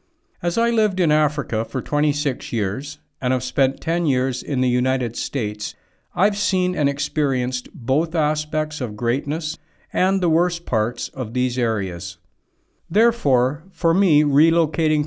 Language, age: English, 60-79